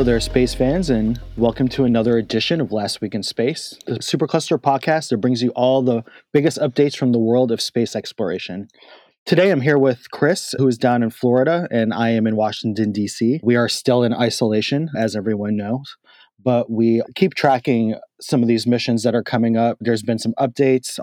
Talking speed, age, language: 200 wpm, 30-49, English